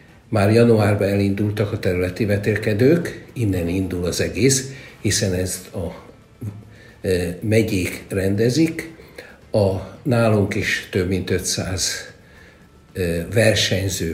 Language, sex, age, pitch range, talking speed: Hungarian, male, 60-79, 90-110 Hz, 95 wpm